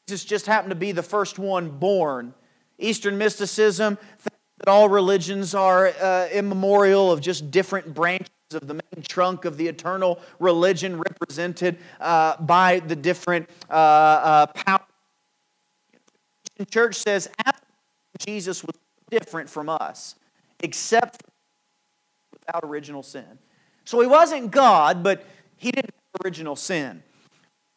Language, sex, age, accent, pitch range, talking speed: English, male, 40-59, American, 170-210 Hz, 130 wpm